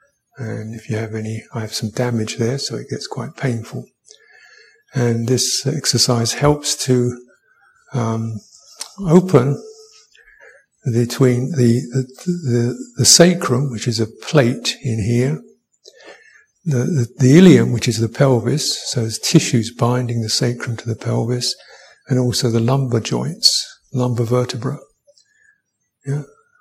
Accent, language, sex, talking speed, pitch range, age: British, English, male, 135 wpm, 125-160 Hz, 50-69